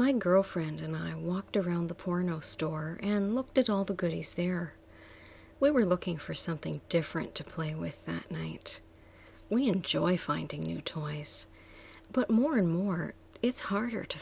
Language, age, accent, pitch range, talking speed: English, 40-59, American, 155-195 Hz, 165 wpm